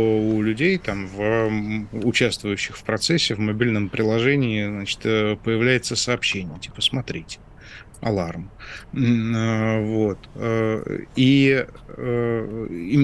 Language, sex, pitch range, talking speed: Russian, male, 105-125 Hz, 80 wpm